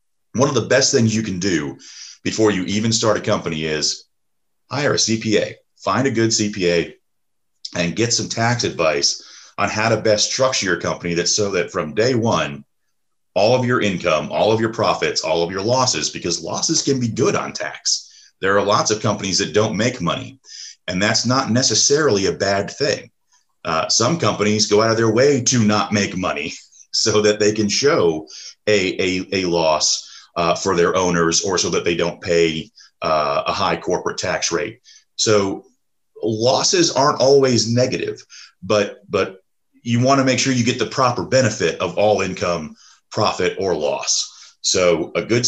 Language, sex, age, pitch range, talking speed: English, male, 40-59, 90-120 Hz, 180 wpm